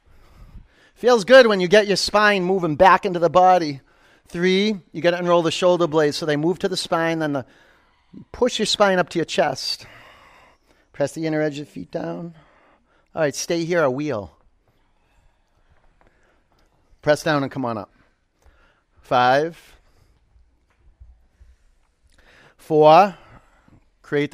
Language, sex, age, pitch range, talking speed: English, male, 40-59, 140-180 Hz, 140 wpm